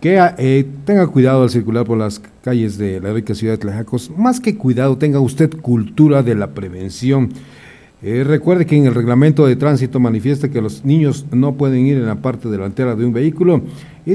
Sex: male